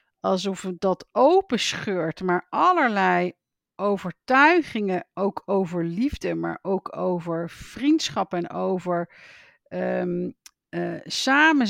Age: 50-69